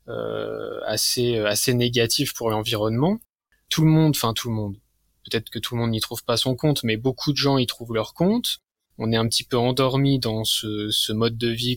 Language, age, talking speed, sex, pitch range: French, 20-39, 220 wpm, male, 110-135 Hz